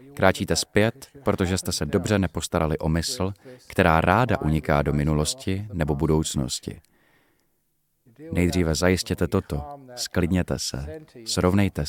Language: Czech